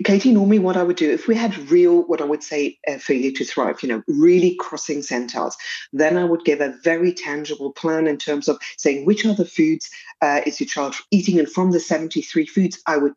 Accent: British